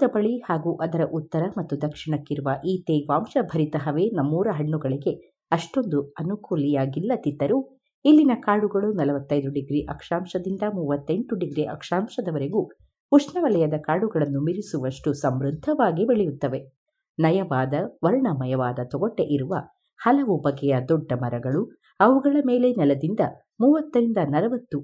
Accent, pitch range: native, 145-225 Hz